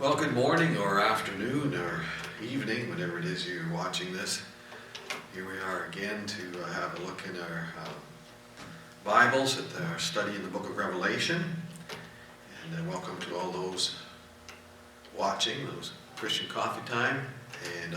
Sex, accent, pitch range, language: male, American, 95-120 Hz, English